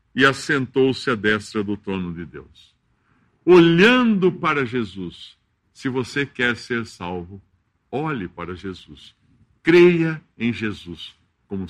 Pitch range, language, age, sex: 100-145 Hz, Portuguese, 60-79, male